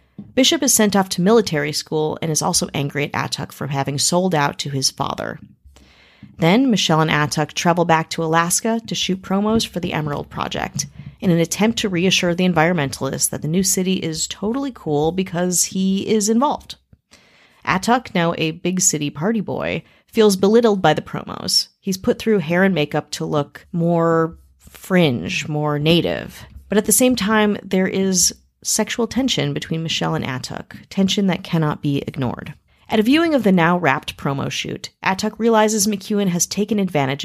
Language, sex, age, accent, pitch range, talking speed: English, female, 30-49, American, 155-210 Hz, 175 wpm